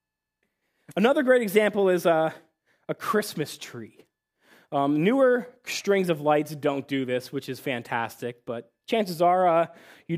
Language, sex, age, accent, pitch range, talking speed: English, male, 20-39, American, 140-200 Hz, 140 wpm